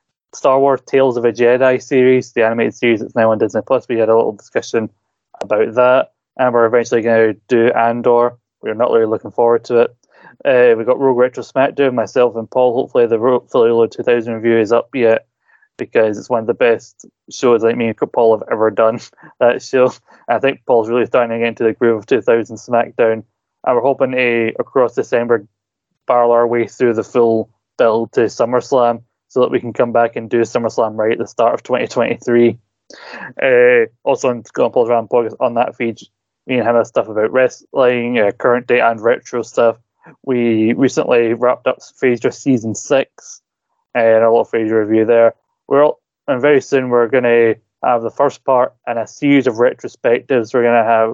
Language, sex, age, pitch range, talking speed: English, male, 20-39, 115-130 Hz, 190 wpm